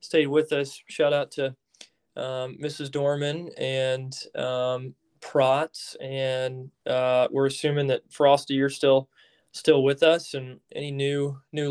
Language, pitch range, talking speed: English, 125-140 Hz, 140 wpm